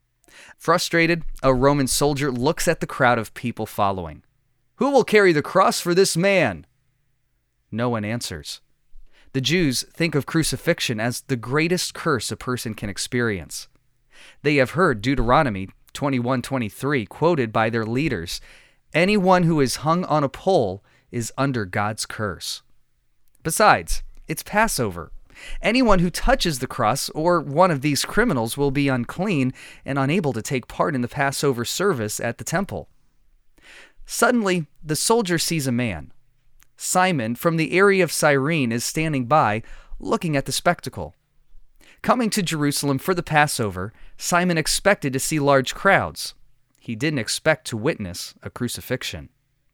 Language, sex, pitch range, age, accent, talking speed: English, male, 120-165 Hz, 30-49, American, 145 wpm